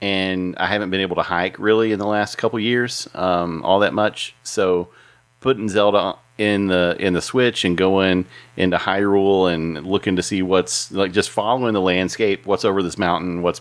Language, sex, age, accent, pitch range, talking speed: English, male, 40-59, American, 85-100 Hz, 200 wpm